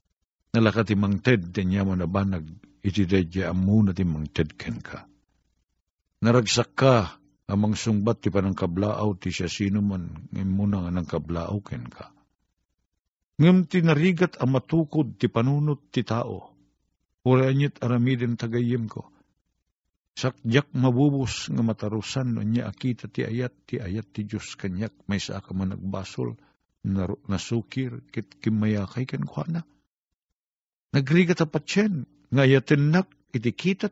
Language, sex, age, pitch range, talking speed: Filipino, male, 50-69, 95-150 Hz, 115 wpm